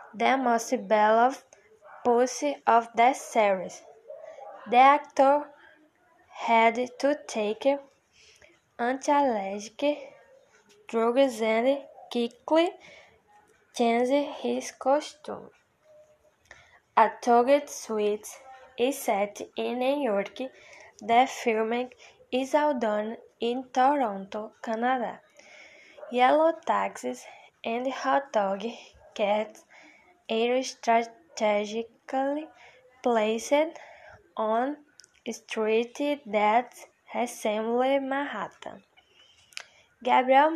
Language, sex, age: English, female, 10-29